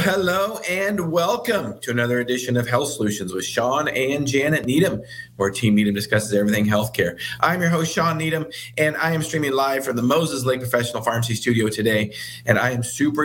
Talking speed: 190 wpm